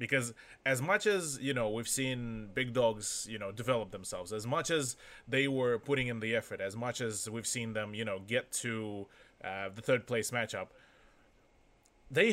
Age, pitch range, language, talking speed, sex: 20-39, 110-140 Hz, English, 190 wpm, male